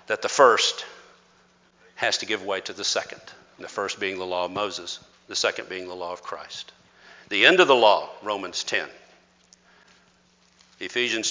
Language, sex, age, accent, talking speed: English, male, 50-69, American, 170 wpm